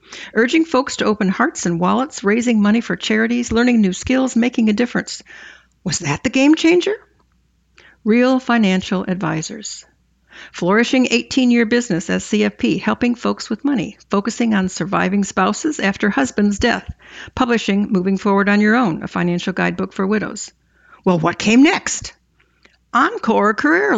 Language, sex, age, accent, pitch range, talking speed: English, female, 60-79, American, 200-255 Hz, 145 wpm